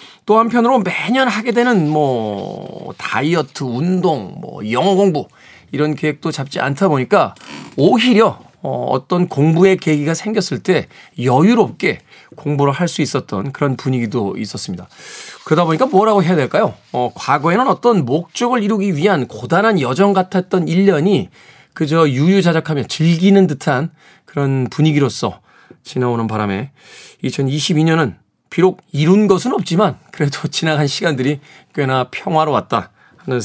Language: Korean